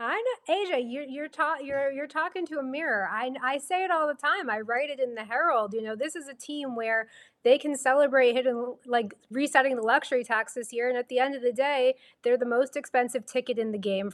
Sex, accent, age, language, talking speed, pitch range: female, American, 20-39, English, 245 wpm, 225-275 Hz